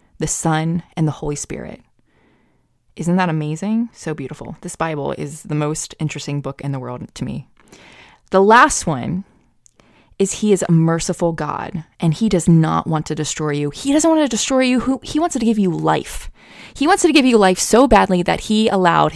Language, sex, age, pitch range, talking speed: English, female, 20-39, 155-210 Hz, 195 wpm